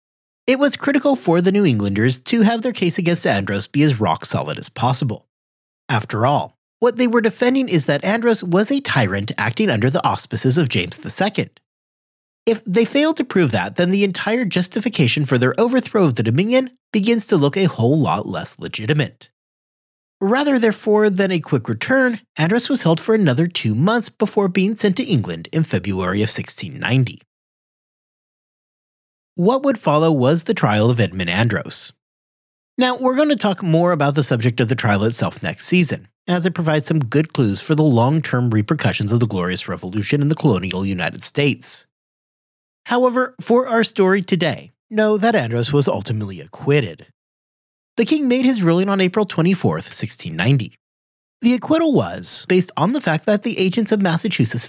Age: 30-49